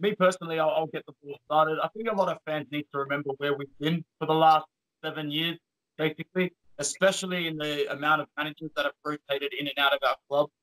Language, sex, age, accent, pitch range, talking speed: English, male, 30-49, Australian, 145-165 Hz, 230 wpm